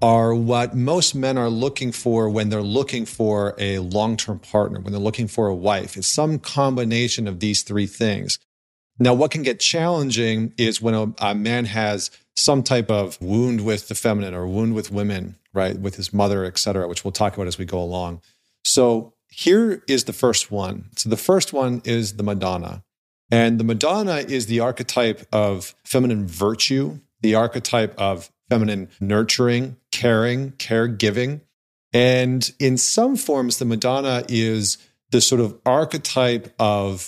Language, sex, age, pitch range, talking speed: English, male, 40-59, 100-120 Hz, 165 wpm